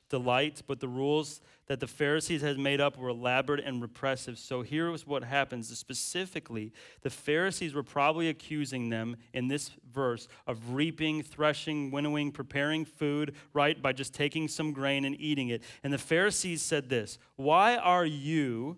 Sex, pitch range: male, 130-155 Hz